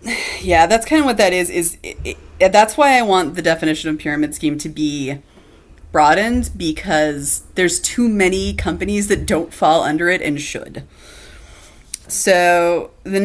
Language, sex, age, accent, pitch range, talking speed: English, female, 30-49, American, 155-225 Hz, 165 wpm